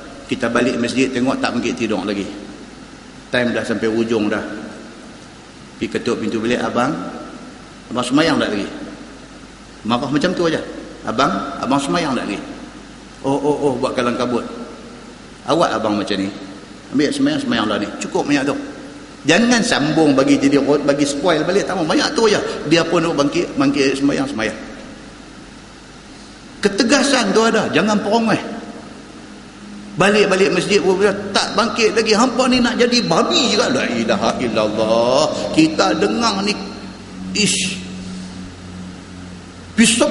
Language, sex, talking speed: Malay, male, 135 wpm